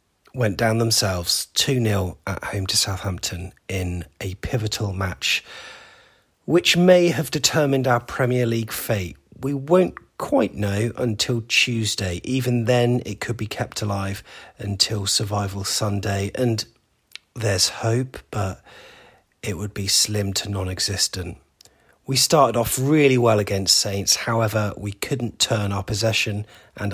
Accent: British